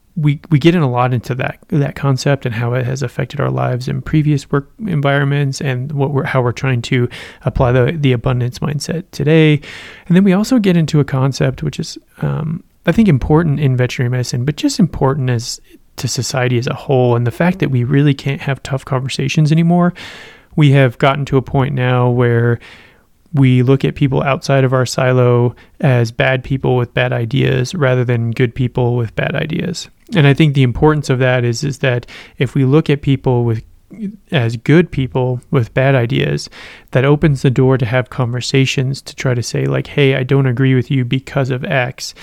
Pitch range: 125-150 Hz